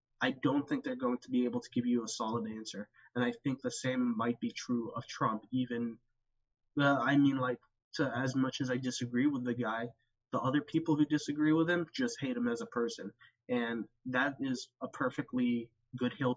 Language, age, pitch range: English, 20-39, 120-135 Hz